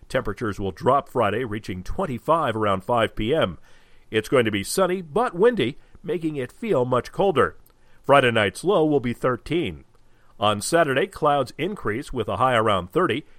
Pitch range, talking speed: 115-165 Hz, 160 wpm